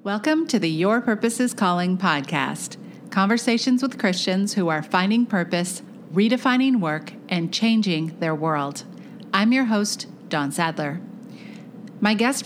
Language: English